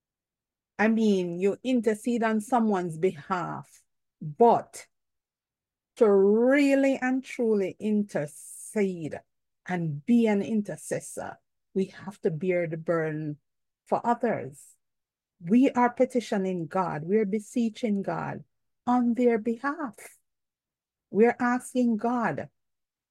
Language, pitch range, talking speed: English, 170-235 Hz, 105 wpm